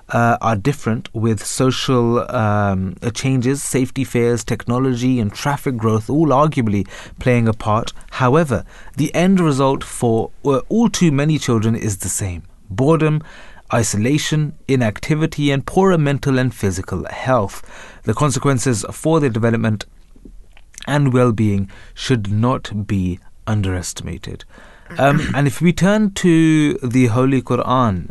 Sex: male